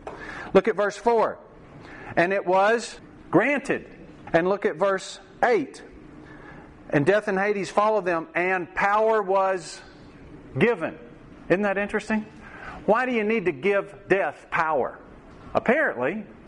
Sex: male